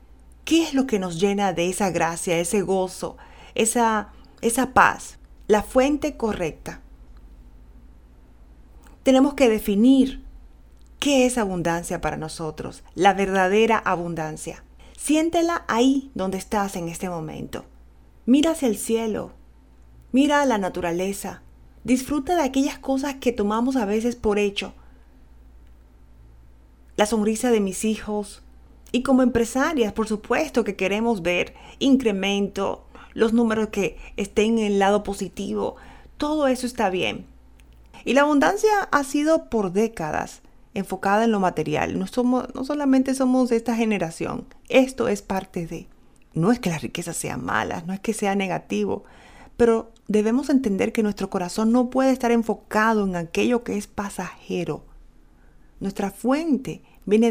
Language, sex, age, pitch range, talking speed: Spanish, female, 30-49, 175-245 Hz, 135 wpm